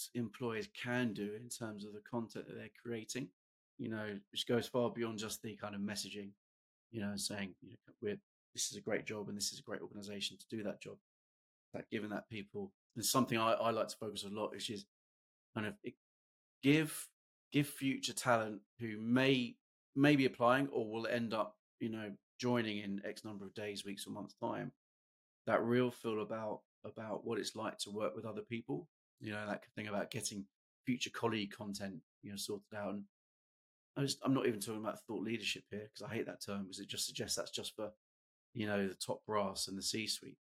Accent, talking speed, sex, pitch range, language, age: British, 210 wpm, male, 100-115 Hz, English, 30-49